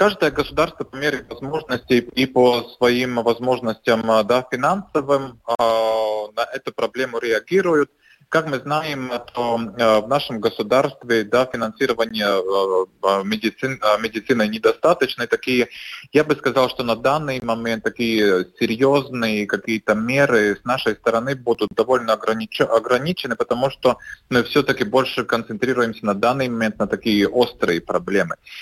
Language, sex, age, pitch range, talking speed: Russian, male, 20-39, 110-135 Hz, 115 wpm